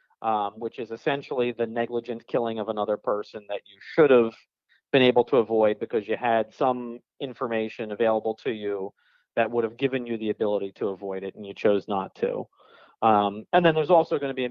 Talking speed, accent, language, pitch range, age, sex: 205 wpm, American, English, 110-135 Hz, 40-59, male